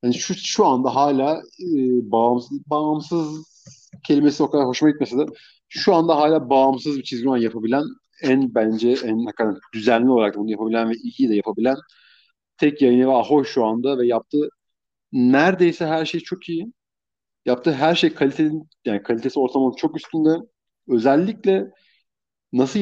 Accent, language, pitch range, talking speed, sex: native, Turkish, 125-160 Hz, 145 wpm, male